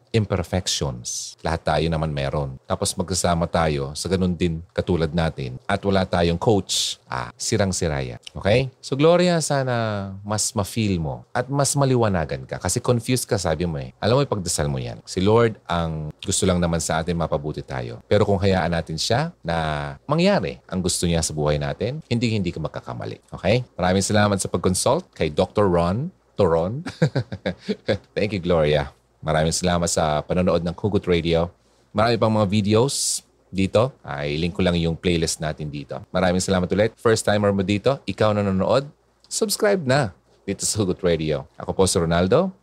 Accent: native